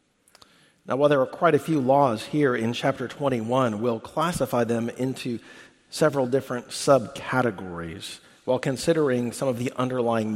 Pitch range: 110-135 Hz